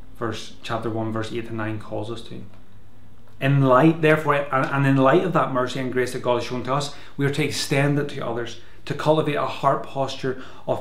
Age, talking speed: 30-49, 220 wpm